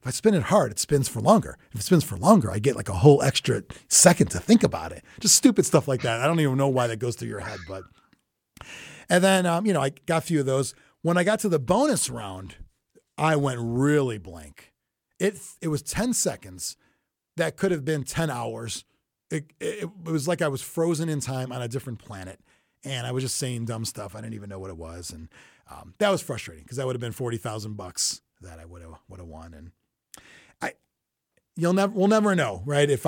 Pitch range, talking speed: 110-165 Hz, 230 wpm